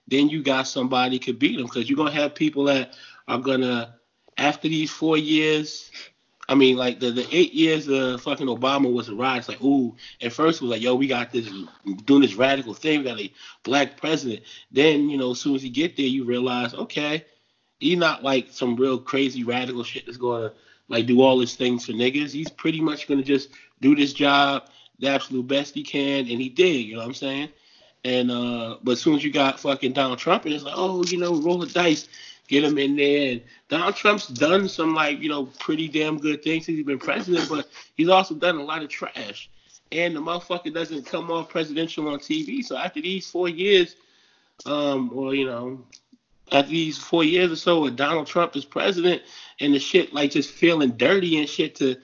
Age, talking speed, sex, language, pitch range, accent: 20-39, 225 wpm, male, English, 130-160 Hz, American